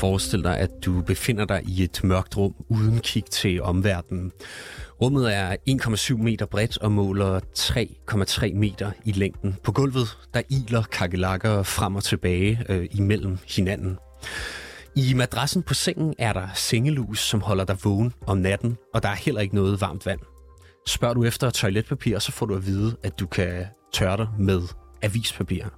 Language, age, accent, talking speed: Danish, 30-49, native, 170 wpm